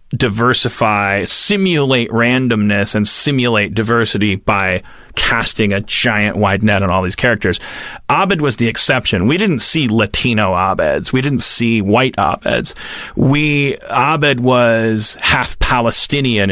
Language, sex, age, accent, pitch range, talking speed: English, male, 30-49, American, 100-130 Hz, 125 wpm